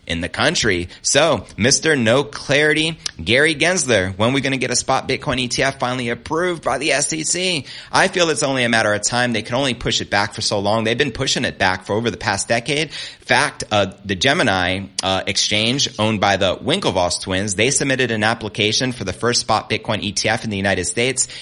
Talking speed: 215 wpm